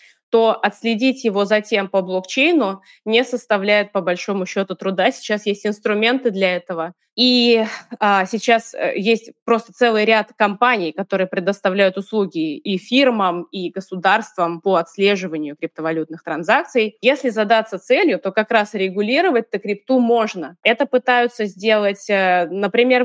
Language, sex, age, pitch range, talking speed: Russian, female, 20-39, 185-230 Hz, 130 wpm